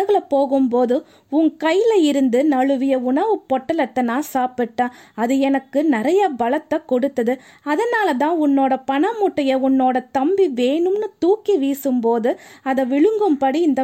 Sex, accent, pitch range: female, native, 240-315 Hz